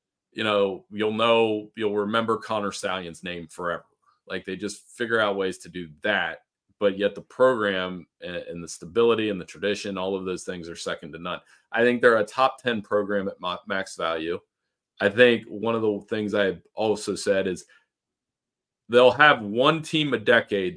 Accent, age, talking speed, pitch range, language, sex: American, 40-59, 185 wpm, 95-115 Hz, English, male